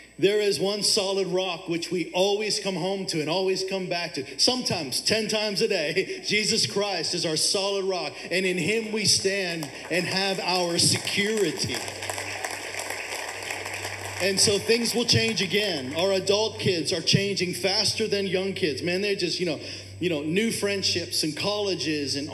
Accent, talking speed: American, 170 wpm